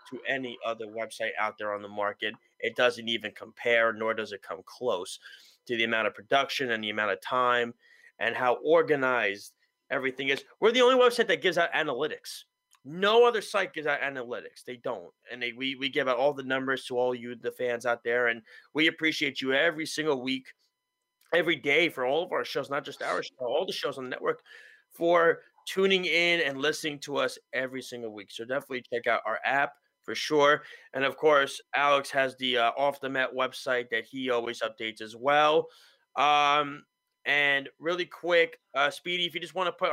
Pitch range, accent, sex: 125-185 Hz, American, male